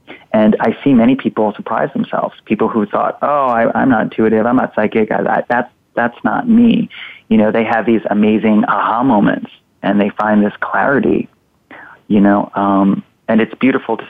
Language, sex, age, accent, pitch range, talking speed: English, male, 30-49, American, 105-120 Hz, 185 wpm